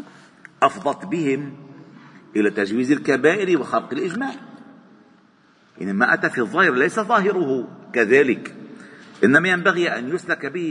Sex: male